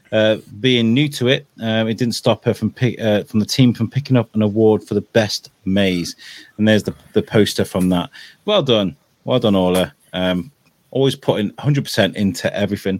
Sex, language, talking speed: male, English, 205 wpm